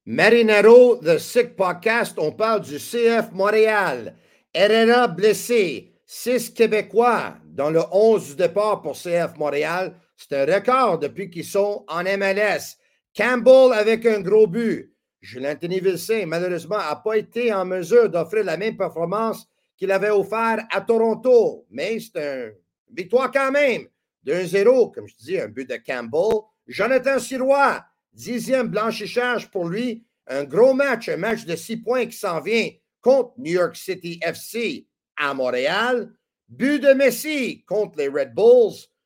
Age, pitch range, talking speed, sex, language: 50-69, 195-260 Hz, 155 wpm, male, French